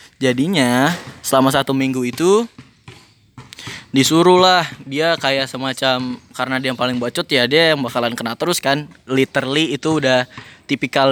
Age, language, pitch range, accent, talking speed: 10-29, English, 135-180 Hz, Indonesian, 140 wpm